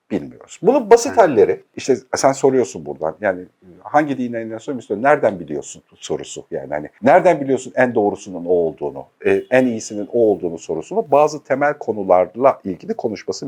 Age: 50-69